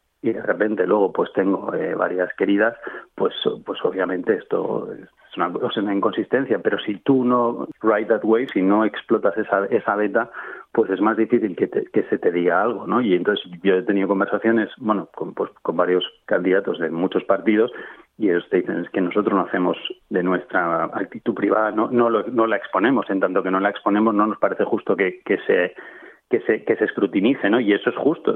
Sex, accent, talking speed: male, Spanish, 210 wpm